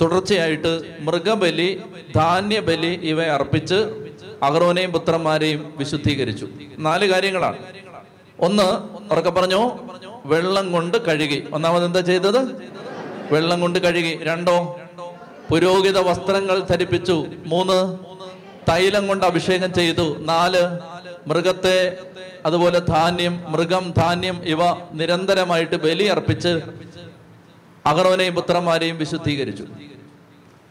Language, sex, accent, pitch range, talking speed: Malayalam, male, native, 160-185 Hz, 80 wpm